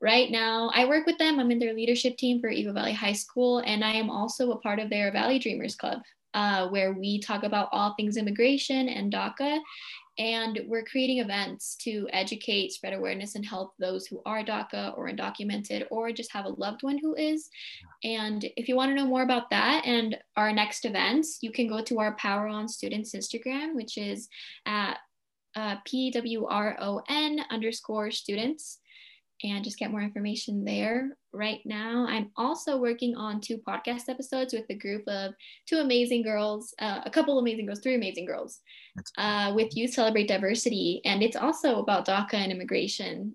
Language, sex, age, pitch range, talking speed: English, female, 10-29, 210-255 Hz, 185 wpm